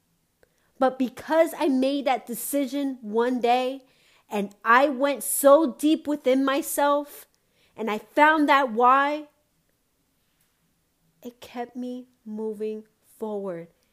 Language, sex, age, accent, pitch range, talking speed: English, female, 30-49, American, 195-275 Hz, 110 wpm